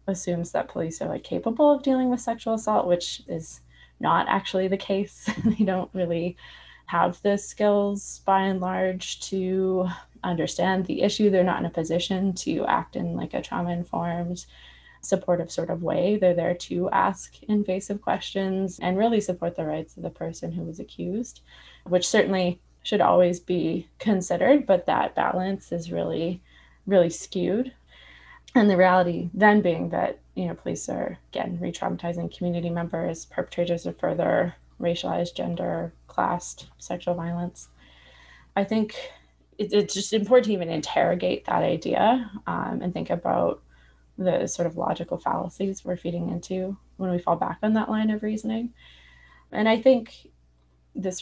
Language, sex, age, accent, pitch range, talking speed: English, female, 20-39, American, 170-200 Hz, 155 wpm